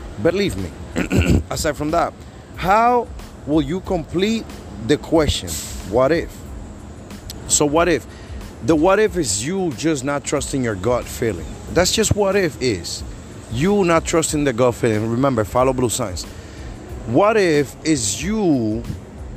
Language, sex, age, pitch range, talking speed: English, male, 30-49, 105-155 Hz, 145 wpm